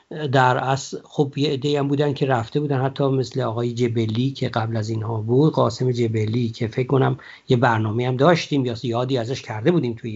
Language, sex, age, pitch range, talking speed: Persian, male, 50-69, 120-155 Hz, 195 wpm